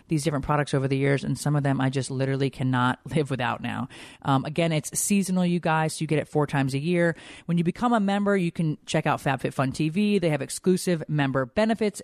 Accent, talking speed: American, 235 wpm